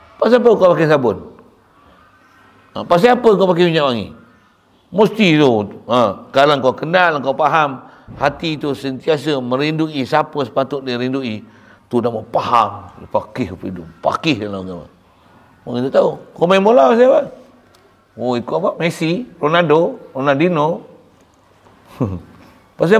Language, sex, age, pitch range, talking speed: Malay, male, 50-69, 110-185 Hz, 130 wpm